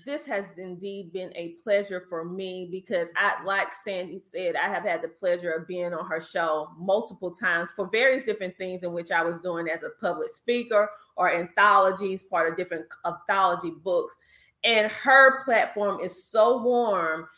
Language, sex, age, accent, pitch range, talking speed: English, female, 30-49, American, 185-240 Hz, 175 wpm